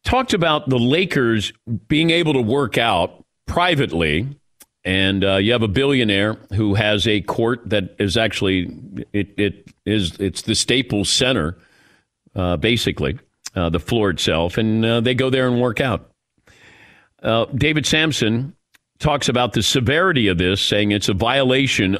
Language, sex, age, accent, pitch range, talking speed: English, male, 50-69, American, 105-150 Hz, 155 wpm